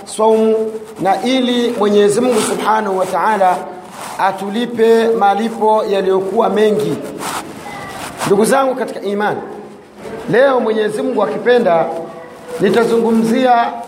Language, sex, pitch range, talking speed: Swahili, male, 210-250 Hz, 90 wpm